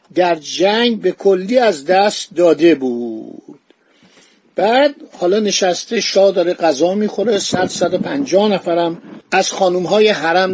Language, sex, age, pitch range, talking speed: Persian, male, 50-69, 175-220 Hz, 120 wpm